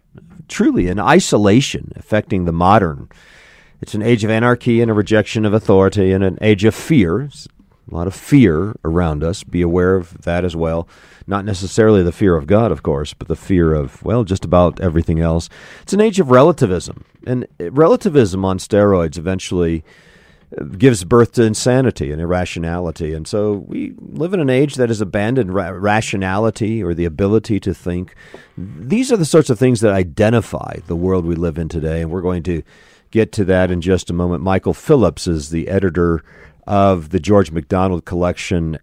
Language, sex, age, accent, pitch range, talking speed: English, male, 40-59, American, 85-110 Hz, 180 wpm